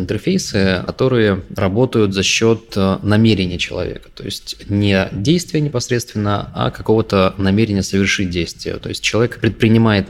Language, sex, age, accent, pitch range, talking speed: Russian, male, 20-39, native, 95-110 Hz, 125 wpm